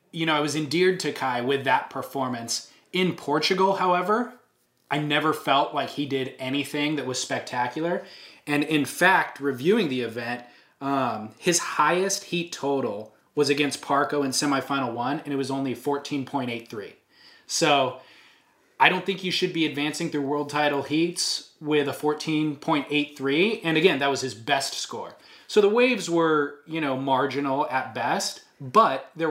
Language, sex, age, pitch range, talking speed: English, male, 20-39, 130-155 Hz, 160 wpm